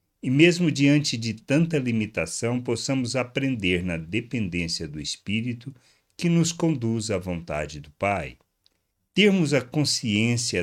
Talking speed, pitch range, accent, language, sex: 125 wpm, 90-125 Hz, Brazilian, Portuguese, male